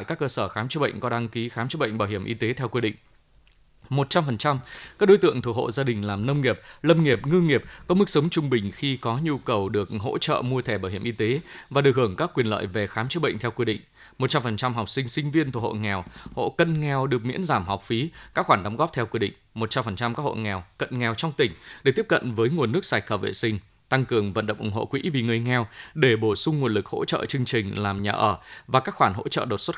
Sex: male